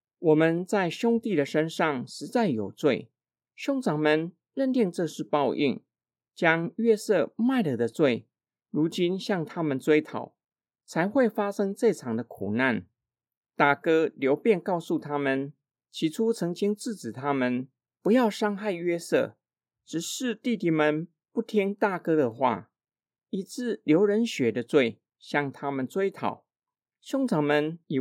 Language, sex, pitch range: Chinese, male, 140-215 Hz